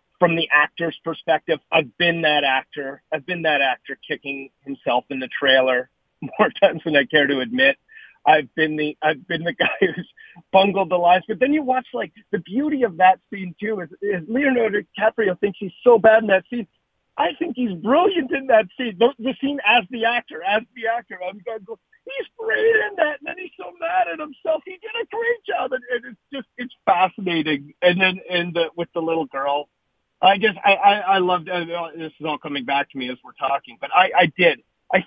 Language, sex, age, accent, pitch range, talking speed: English, male, 40-59, American, 150-225 Hz, 220 wpm